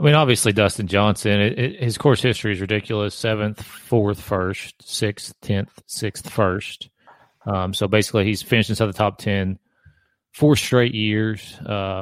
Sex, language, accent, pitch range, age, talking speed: male, English, American, 95-110 Hz, 30-49, 140 wpm